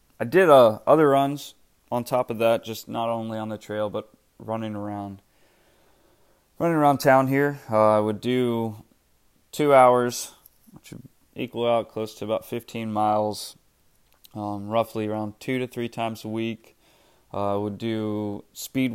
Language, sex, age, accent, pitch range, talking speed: English, male, 20-39, American, 100-120 Hz, 160 wpm